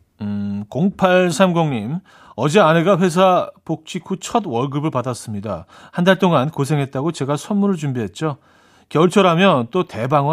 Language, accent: Korean, native